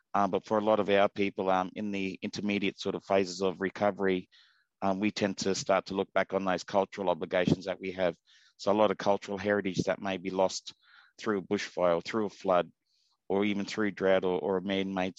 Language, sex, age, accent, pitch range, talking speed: English, male, 30-49, Australian, 95-105 Hz, 225 wpm